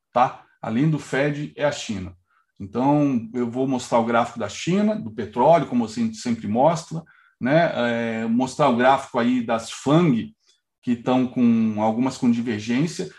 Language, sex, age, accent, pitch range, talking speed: Portuguese, male, 40-59, Brazilian, 120-165 Hz, 160 wpm